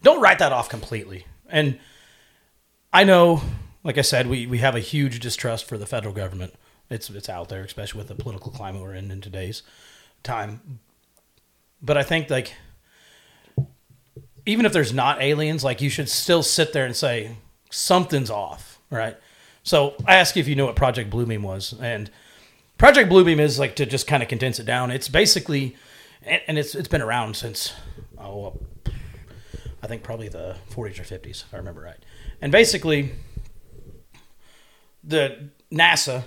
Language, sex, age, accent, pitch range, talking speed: English, male, 30-49, American, 110-145 Hz, 170 wpm